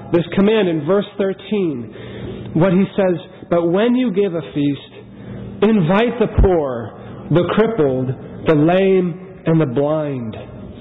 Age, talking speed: 40-59, 135 wpm